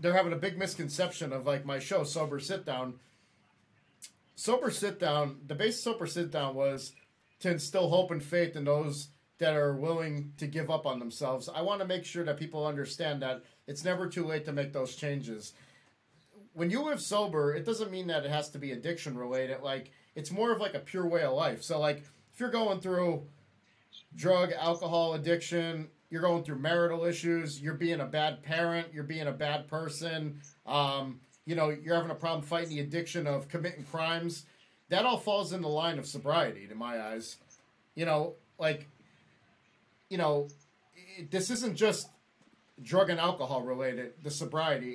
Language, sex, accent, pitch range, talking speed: English, male, American, 145-170 Hz, 185 wpm